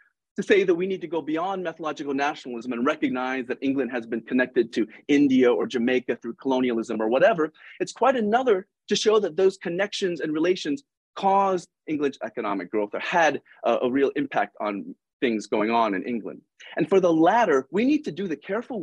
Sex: male